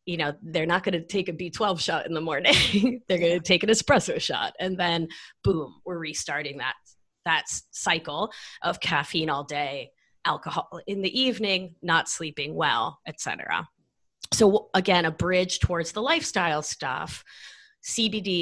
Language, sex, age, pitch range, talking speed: English, female, 30-49, 160-205 Hz, 160 wpm